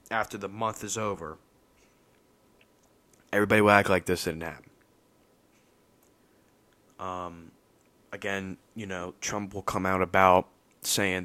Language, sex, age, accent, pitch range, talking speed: English, male, 20-39, American, 95-115 Hz, 115 wpm